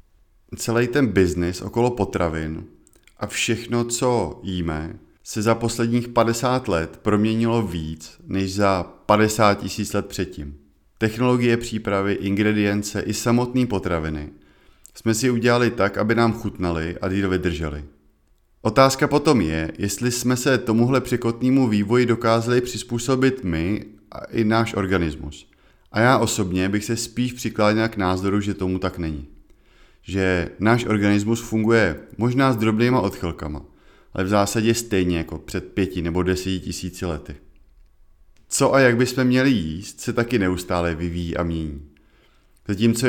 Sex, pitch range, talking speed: male, 85-115 Hz, 140 wpm